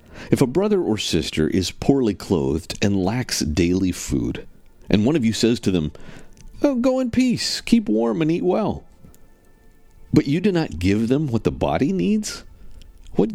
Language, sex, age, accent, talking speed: English, male, 50-69, American, 170 wpm